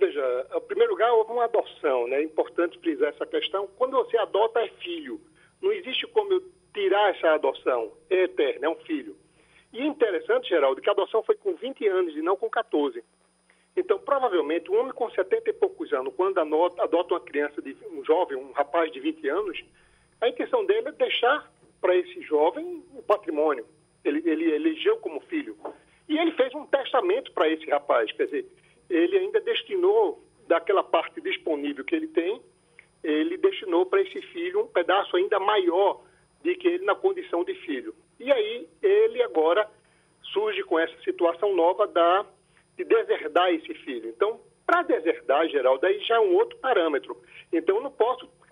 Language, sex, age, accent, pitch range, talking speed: Portuguese, male, 50-69, Brazilian, 255-430 Hz, 185 wpm